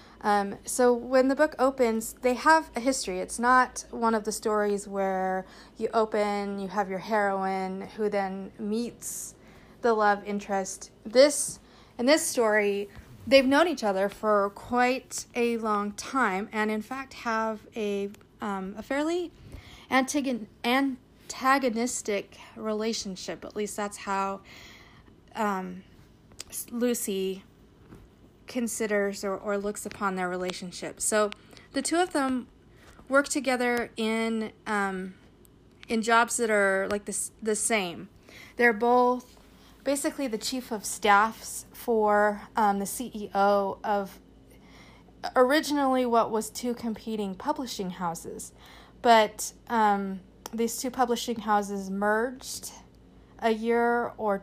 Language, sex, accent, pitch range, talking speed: English, female, American, 200-245 Hz, 120 wpm